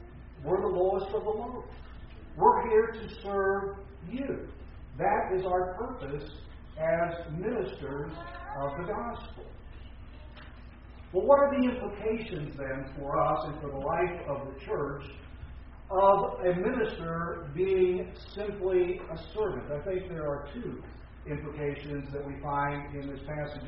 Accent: American